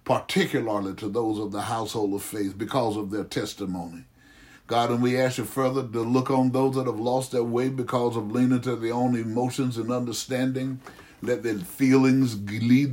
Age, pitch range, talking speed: 60-79, 110-130 Hz, 185 wpm